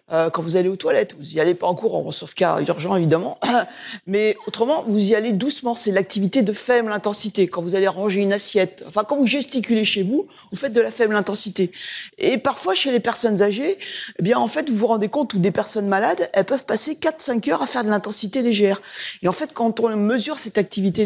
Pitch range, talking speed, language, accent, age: 190-255 Hz, 230 wpm, French, French, 40-59